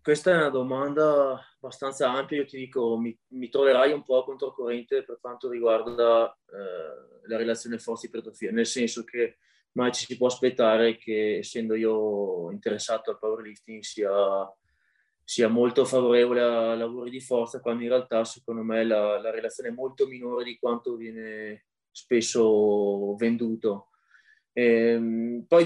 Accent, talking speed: native, 145 wpm